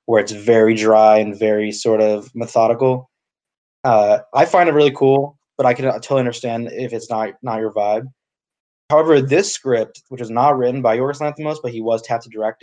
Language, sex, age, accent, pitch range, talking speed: English, male, 20-39, American, 110-130 Hz, 205 wpm